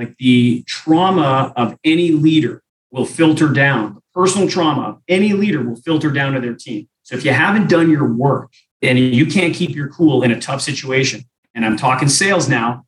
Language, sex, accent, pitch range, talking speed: English, male, American, 130-175 Hz, 200 wpm